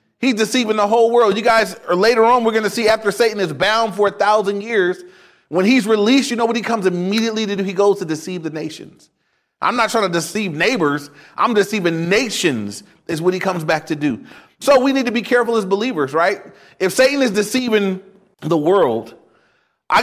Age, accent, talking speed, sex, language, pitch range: 30-49, American, 215 wpm, male, English, 175-235 Hz